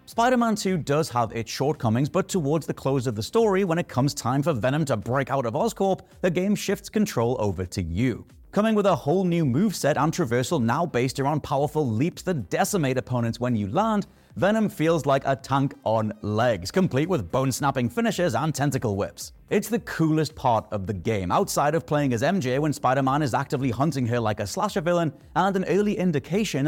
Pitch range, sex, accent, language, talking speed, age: 125-180 Hz, male, British, English, 200 wpm, 30-49